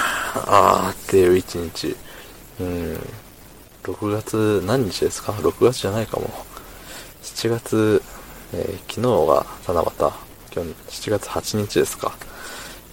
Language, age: Japanese, 20-39